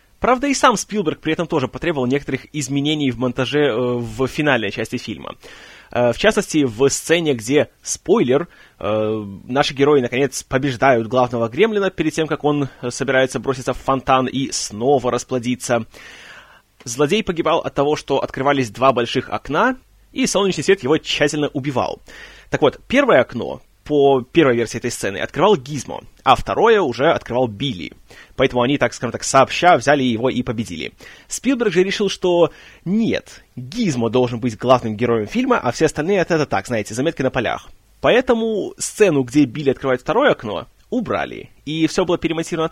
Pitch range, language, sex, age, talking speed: 125-160 Hz, Russian, male, 20-39, 165 wpm